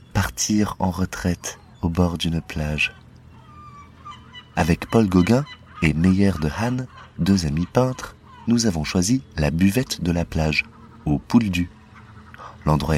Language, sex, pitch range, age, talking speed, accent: French, male, 80-110 Hz, 30-49, 130 wpm, French